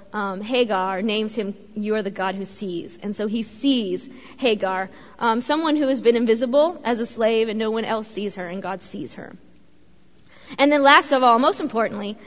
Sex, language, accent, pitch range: female, English, American, 205-270 Hz